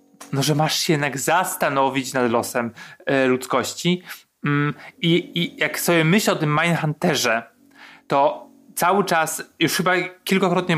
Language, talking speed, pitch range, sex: Polish, 130 wpm, 140-165 Hz, male